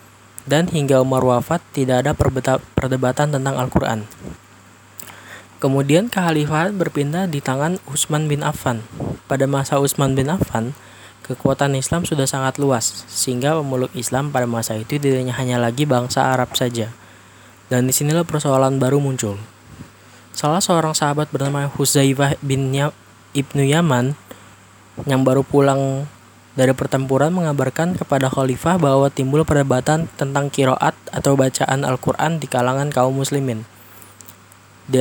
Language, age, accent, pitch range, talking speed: Indonesian, 20-39, native, 125-145 Hz, 125 wpm